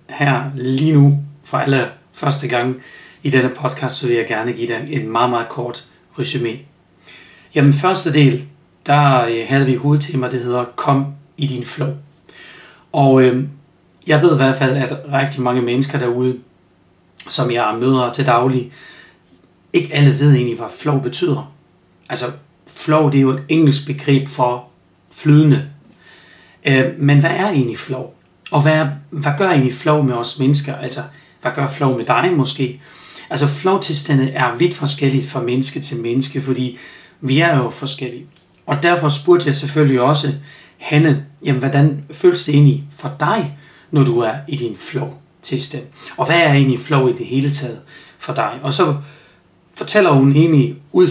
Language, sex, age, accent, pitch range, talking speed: Danish, male, 40-59, native, 130-150 Hz, 165 wpm